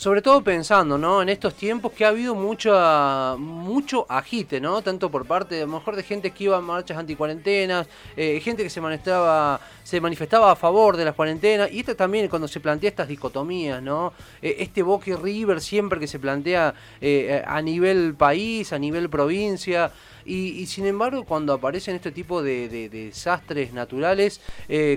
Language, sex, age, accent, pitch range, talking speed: Spanish, male, 30-49, Argentinian, 145-195 Hz, 185 wpm